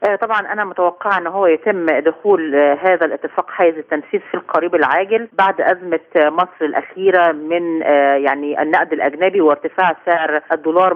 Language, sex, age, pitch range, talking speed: Arabic, female, 40-59, 150-190 Hz, 135 wpm